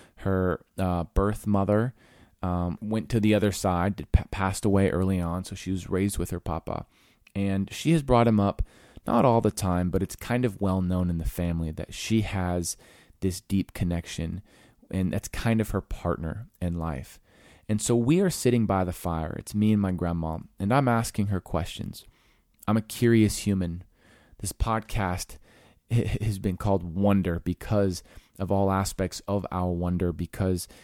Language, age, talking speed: English, 20-39, 175 wpm